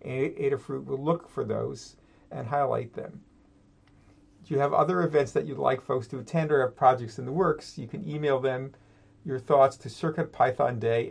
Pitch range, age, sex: 115-140 Hz, 50-69, male